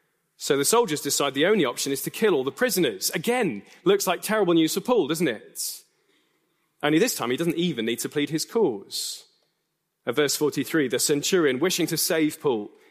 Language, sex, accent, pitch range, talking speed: English, male, British, 145-220 Hz, 195 wpm